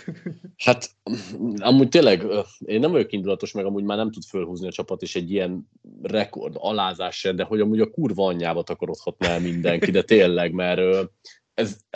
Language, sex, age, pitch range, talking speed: Hungarian, male, 30-49, 95-125 Hz, 170 wpm